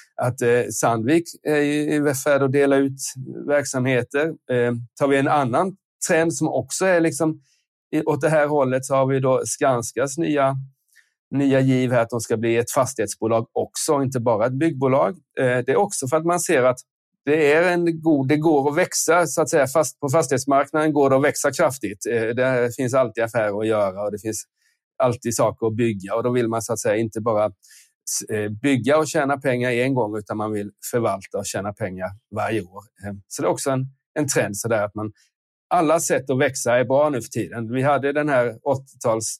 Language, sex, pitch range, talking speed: Swedish, male, 115-145 Hz, 195 wpm